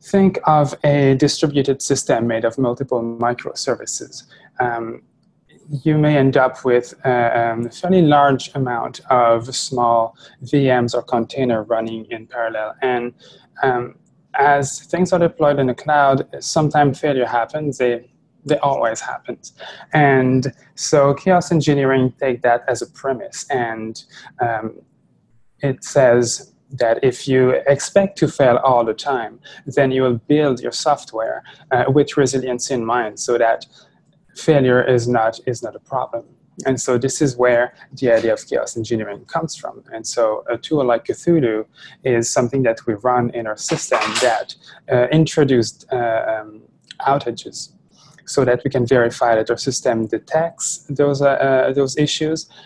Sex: male